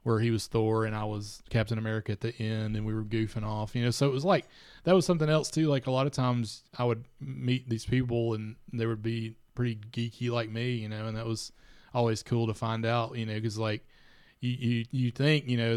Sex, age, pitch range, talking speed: male, 20-39, 110-120 Hz, 250 wpm